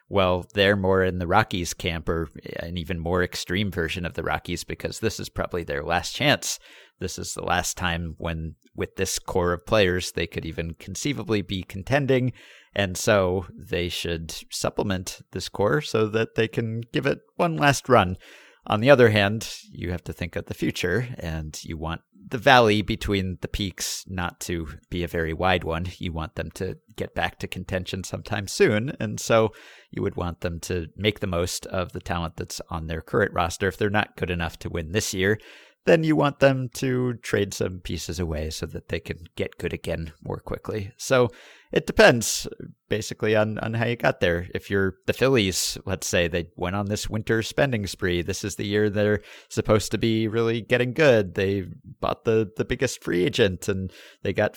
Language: English